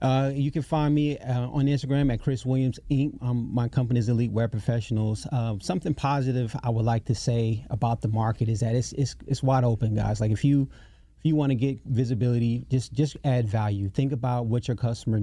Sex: male